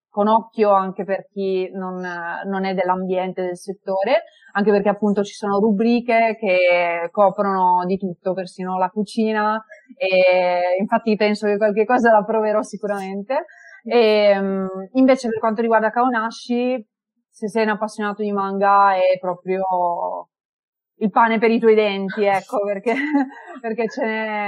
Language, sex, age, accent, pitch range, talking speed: Italian, female, 30-49, native, 185-215 Hz, 140 wpm